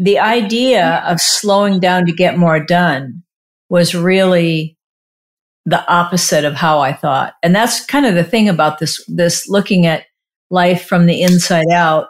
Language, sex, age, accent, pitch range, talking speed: English, female, 50-69, American, 170-200 Hz, 165 wpm